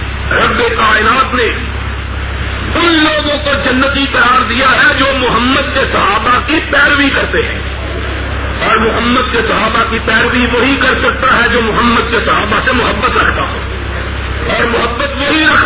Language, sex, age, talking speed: Urdu, male, 50-69, 155 wpm